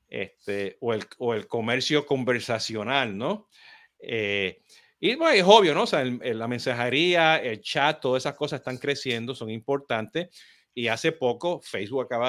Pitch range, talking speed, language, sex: 115-150 Hz, 165 wpm, Spanish, male